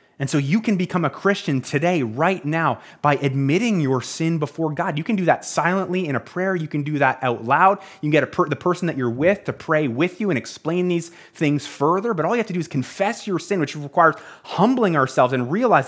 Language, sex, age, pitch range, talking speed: English, male, 30-49, 130-170 Hz, 240 wpm